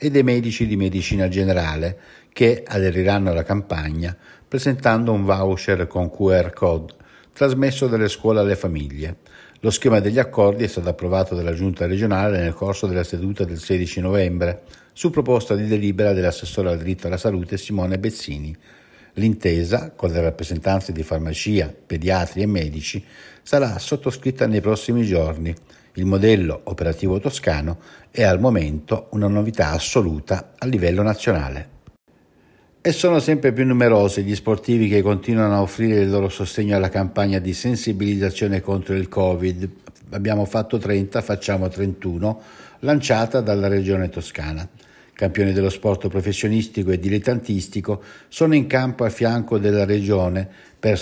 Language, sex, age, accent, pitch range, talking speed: Italian, male, 60-79, native, 90-110 Hz, 140 wpm